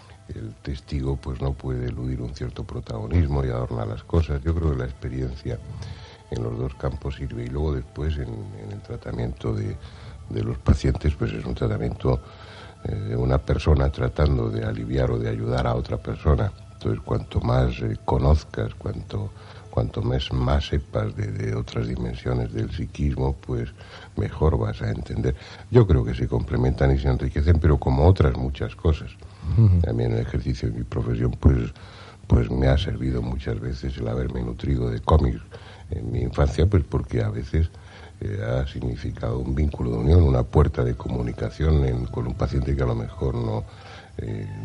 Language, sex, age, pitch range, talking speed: Spanish, male, 60-79, 65-100 Hz, 175 wpm